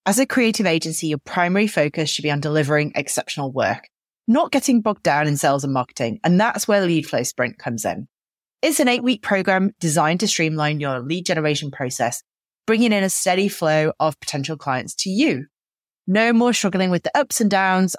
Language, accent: English, British